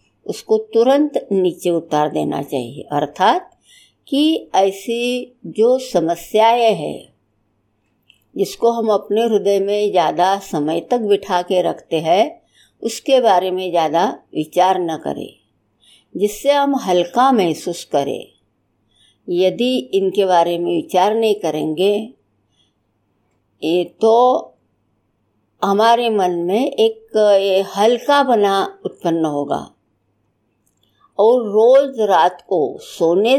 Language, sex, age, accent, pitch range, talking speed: Hindi, female, 60-79, native, 160-235 Hz, 105 wpm